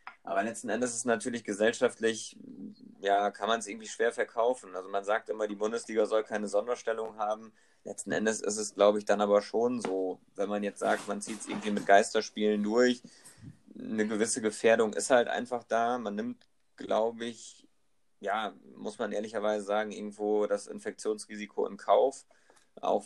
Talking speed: 175 wpm